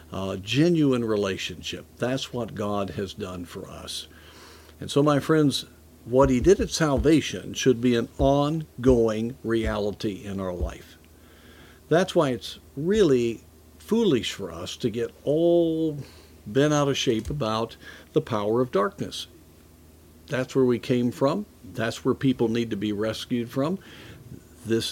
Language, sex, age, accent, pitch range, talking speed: English, male, 50-69, American, 100-135 Hz, 145 wpm